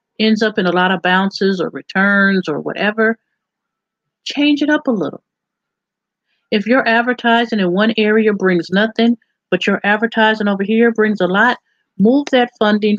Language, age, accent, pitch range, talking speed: English, 50-69, American, 180-230 Hz, 160 wpm